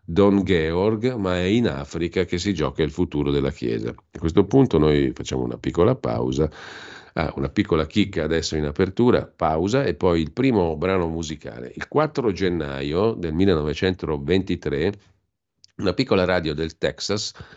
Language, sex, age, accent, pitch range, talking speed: Italian, male, 50-69, native, 75-95 Hz, 150 wpm